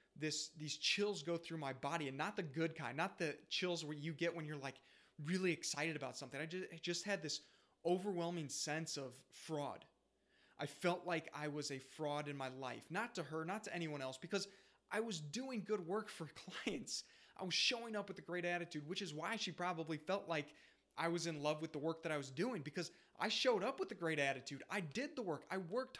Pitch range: 150-190 Hz